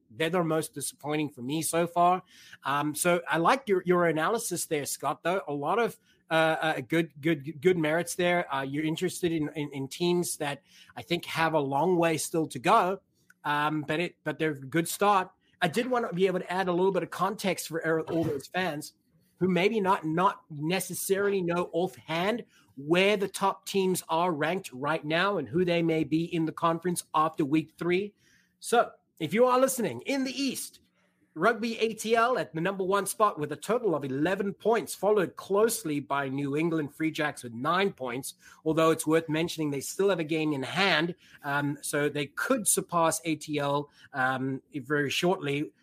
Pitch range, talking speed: 150-190 Hz, 190 wpm